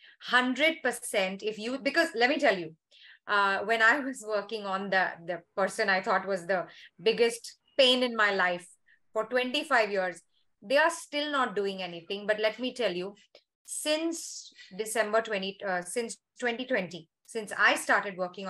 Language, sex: English, female